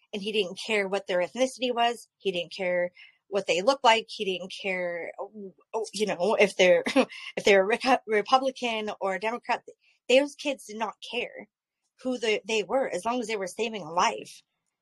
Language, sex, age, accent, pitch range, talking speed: English, female, 20-39, American, 200-245 Hz, 180 wpm